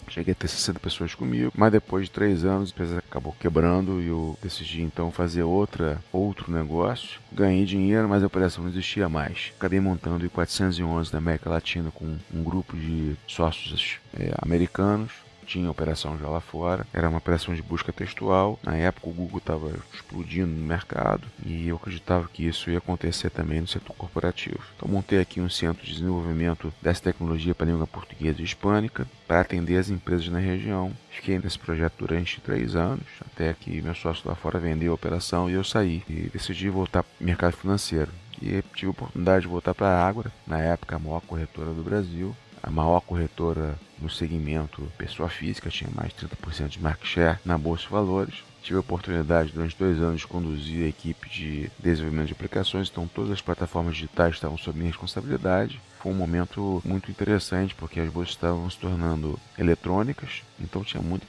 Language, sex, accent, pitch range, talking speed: Portuguese, male, Brazilian, 80-95 Hz, 185 wpm